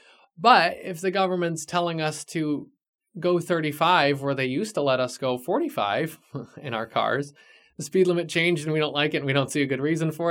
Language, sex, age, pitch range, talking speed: English, male, 20-39, 130-165 Hz, 215 wpm